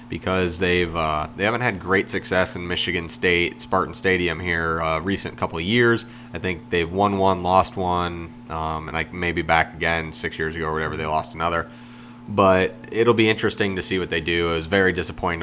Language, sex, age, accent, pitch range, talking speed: English, male, 30-49, American, 85-110 Hz, 205 wpm